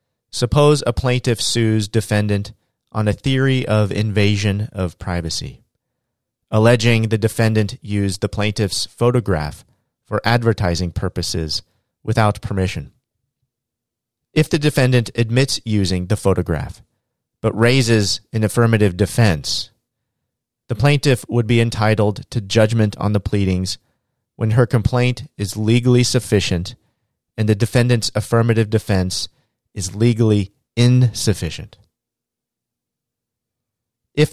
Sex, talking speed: male, 105 wpm